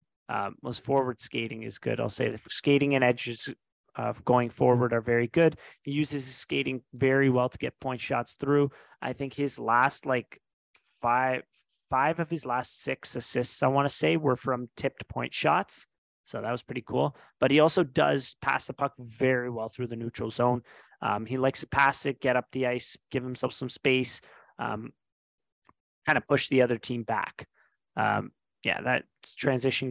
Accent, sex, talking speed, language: American, male, 190 wpm, English